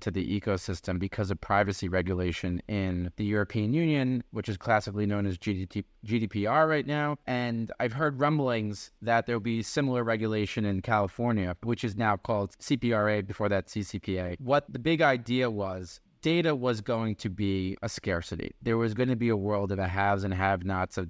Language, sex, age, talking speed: English, male, 20-39, 175 wpm